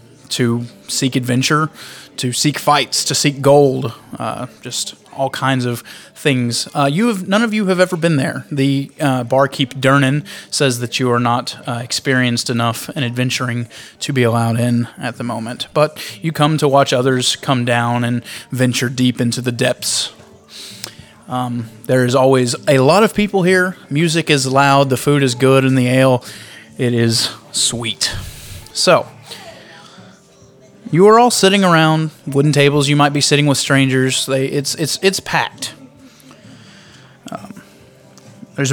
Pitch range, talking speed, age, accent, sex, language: 125-150 Hz, 160 wpm, 20-39, American, male, English